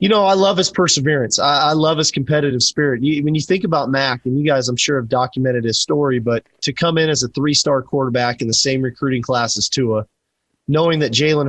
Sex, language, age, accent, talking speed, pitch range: male, English, 30-49, American, 230 wpm, 130-150 Hz